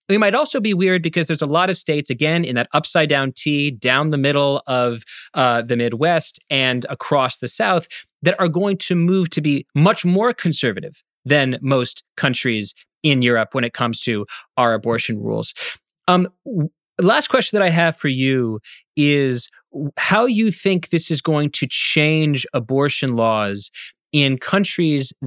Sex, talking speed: male, 170 wpm